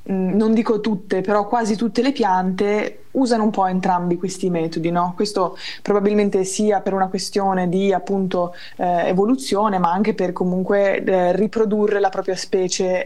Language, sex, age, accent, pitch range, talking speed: Italian, female, 20-39, native, 180-215 Hz, 155 wpm